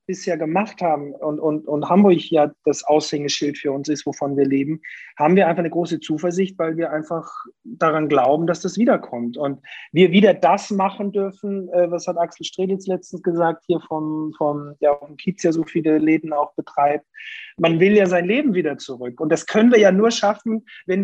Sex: male